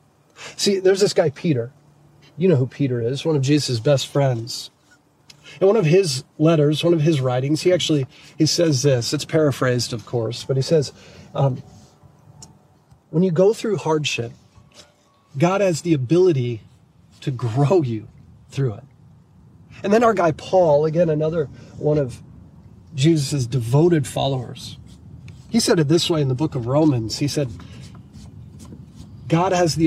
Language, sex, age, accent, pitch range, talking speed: English, male, 40-59, American, 130-170 Hz, 155 wpm